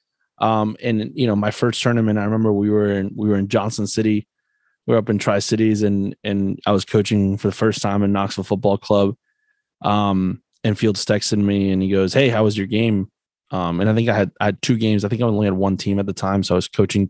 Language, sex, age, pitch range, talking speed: English, male, 20-39, 95-110 Hz, 255 wpm